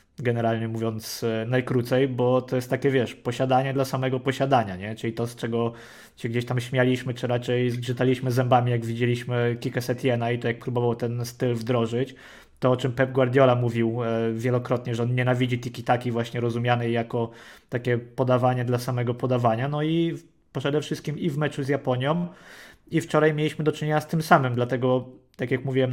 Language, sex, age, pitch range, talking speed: Polish, male, 20-39, 120-135 Hz, 180 wpm